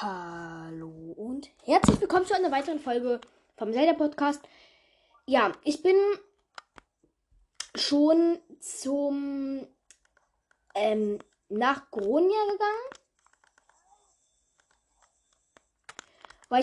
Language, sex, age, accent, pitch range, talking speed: German, female, 10-29, German, 245-340 Hz, 70 wpm